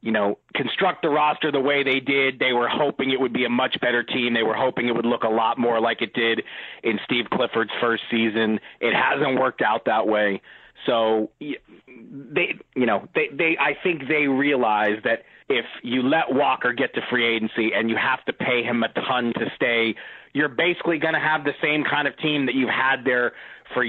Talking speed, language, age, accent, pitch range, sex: 215 wpm, English, 30-49, American, 115-135 Hz, male